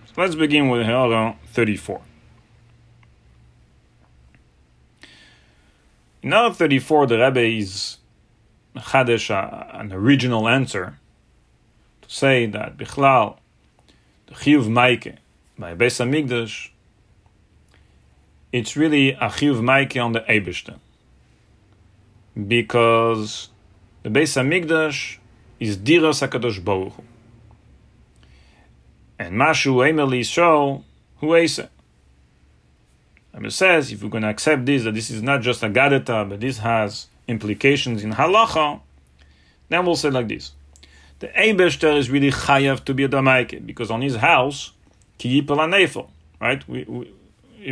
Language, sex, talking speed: English, male, 115 wpm